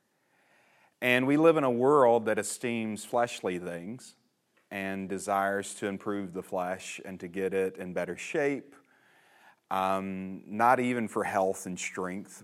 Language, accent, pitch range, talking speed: English, American, 95-105 Hz, 145 wpm